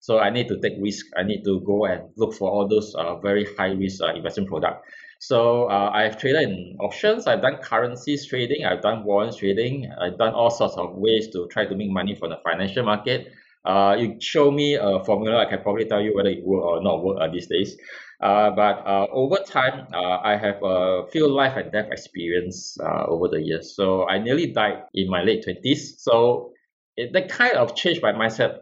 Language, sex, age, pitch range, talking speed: English, male, 20-39, 95-130 Hz, 220 wpm